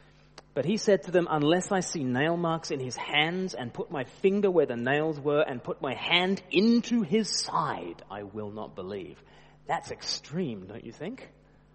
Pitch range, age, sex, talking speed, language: 145-215 Hz, 30-49, male, 190 wpm, English